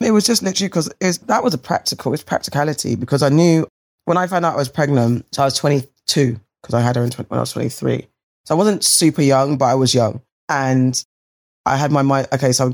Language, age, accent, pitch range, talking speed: English, 20-39, British, 125-145 Hz, 235 wpm